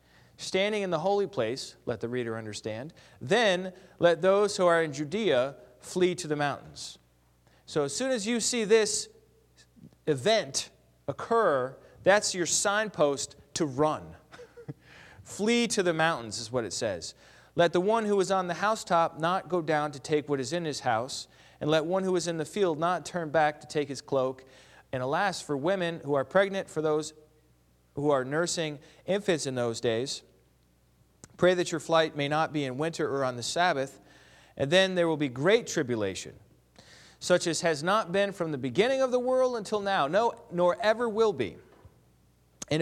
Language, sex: English, male